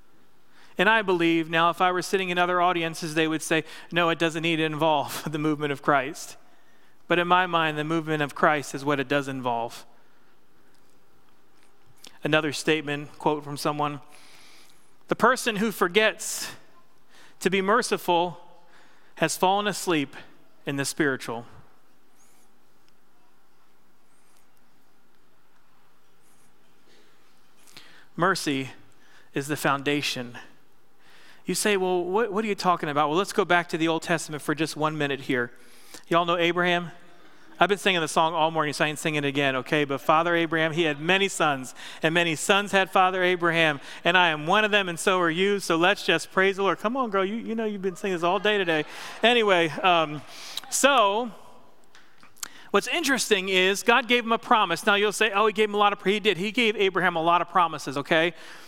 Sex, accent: male, American